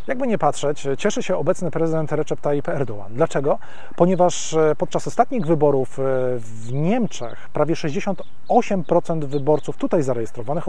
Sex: male